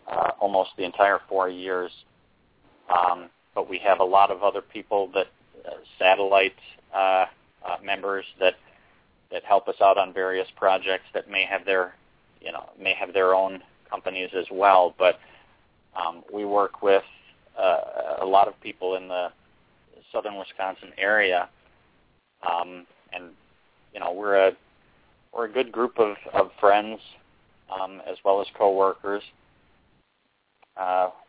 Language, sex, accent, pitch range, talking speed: English, male, American, 95-100 Hz, 145 wpm